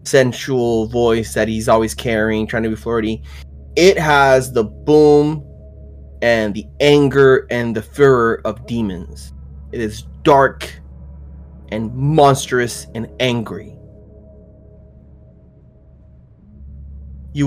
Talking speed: 105 wpm